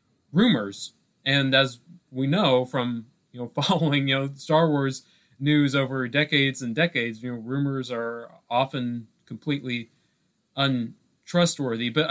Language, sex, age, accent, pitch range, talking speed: English, male, 30-49, American, 115-140 Hz, 130 wpm